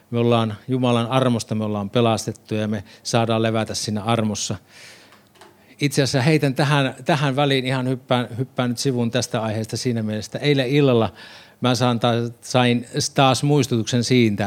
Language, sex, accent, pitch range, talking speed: Finnish, male, native, 110-130 Hz, 155 wpm